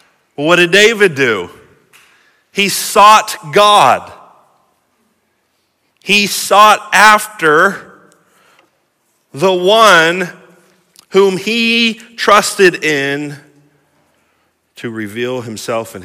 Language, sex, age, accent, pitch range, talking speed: English, male, 40-59, American, 120-180 Hz, 75 wpm